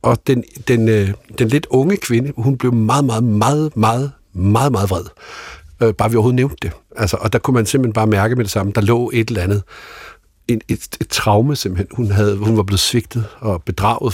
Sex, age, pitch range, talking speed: male, 60-79, 105-125 Hz, 215 wpm